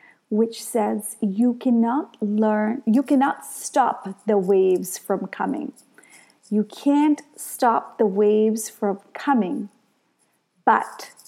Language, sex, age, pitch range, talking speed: English, female, 30-49, 210-255 Hz, 105 wpm